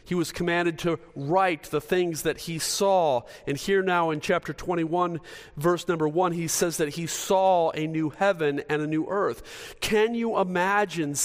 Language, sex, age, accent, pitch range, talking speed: English, male, 40-59, American, 150-190 Hz, 180 wpm